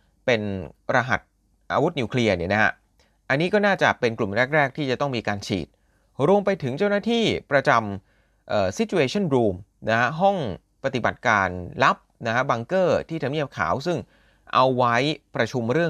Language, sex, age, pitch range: Thai, male, 30-49, 110-180 Hz